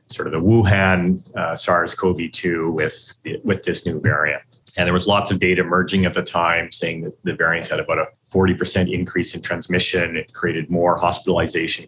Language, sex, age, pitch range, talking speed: English, male, 30-49, 90-105 Hz, 185 wpm